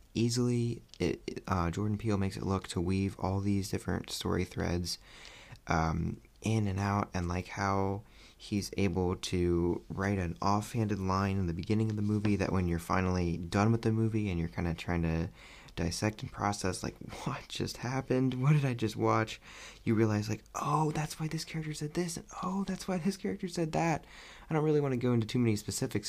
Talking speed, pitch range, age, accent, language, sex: 205 wpm, 90-110 Hz, 20-39, American, English, male